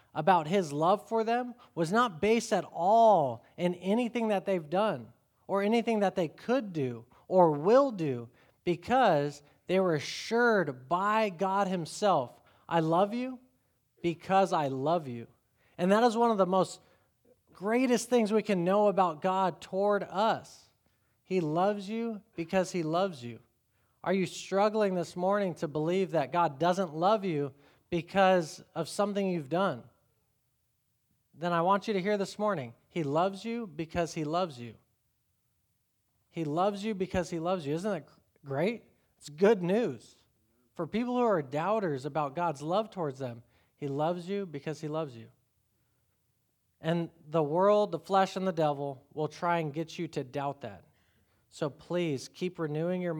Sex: male